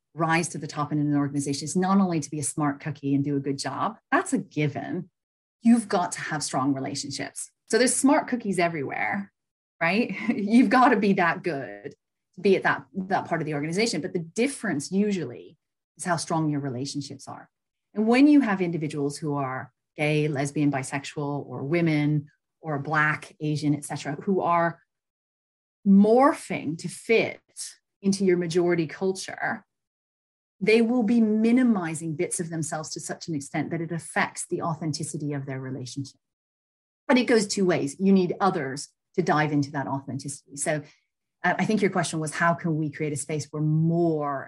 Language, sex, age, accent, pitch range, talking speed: English, female, 30-49, American, 145-185 Hz, 180 wpm